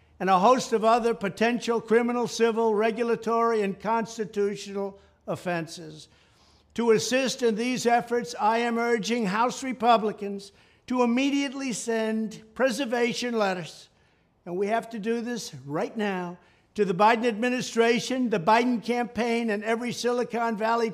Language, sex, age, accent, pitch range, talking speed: English, male, 60-79, American, 205-235 Hz, 130 wpm